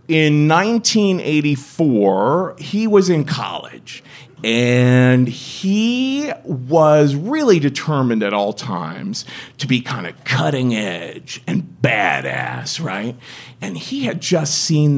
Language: English